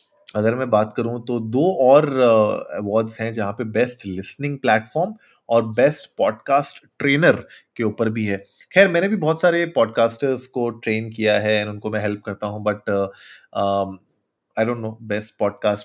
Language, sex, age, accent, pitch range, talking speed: Hindi, male, 20-39, native, 105-125 Hz, 170 wpm